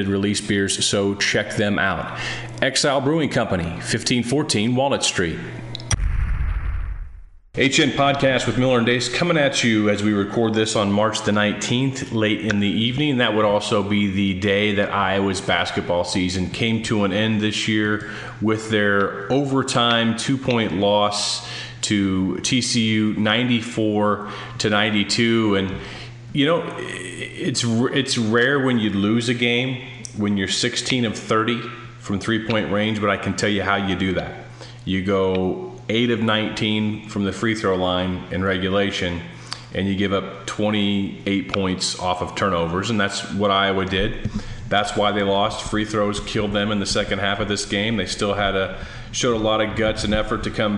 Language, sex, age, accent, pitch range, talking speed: English, male, 30-49, American, 100-115 Hz, 165 wpm